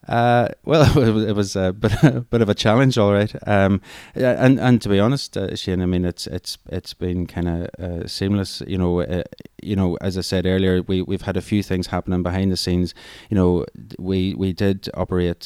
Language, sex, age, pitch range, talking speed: English, male, 20-39, 85-100 Hz, 205 wpm